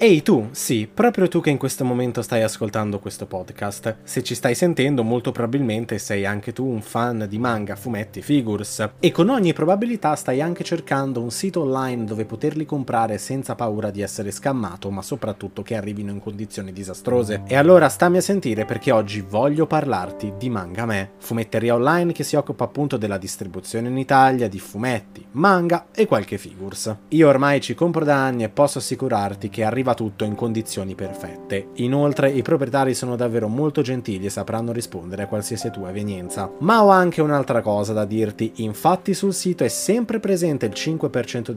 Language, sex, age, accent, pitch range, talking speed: Italian, male, 20-39, native, 105-155 Hz, 180 wpm